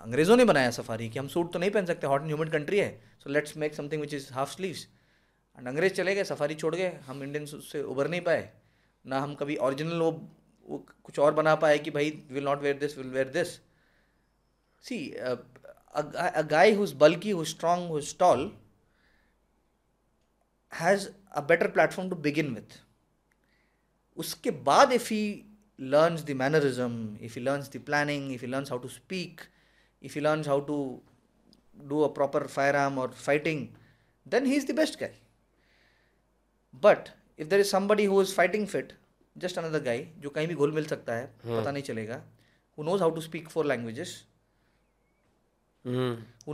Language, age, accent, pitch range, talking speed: English, 20-39, Indian, 130-165 Hz, 170 wpm